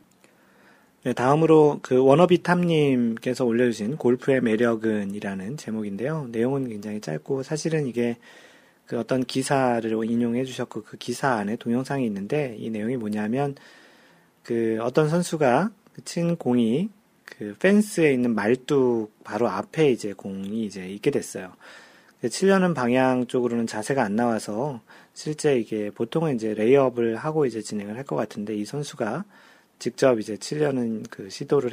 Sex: male